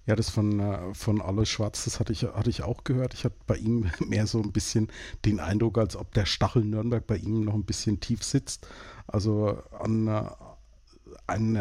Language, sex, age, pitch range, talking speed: German, male, 50-69, 100-120 Hz, 190 wpm